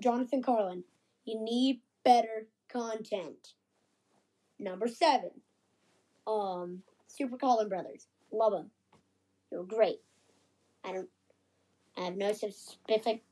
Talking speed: 100 wpm